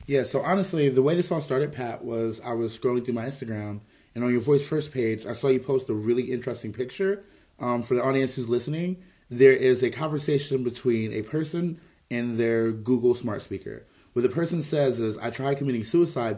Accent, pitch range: American, 115-140 Hz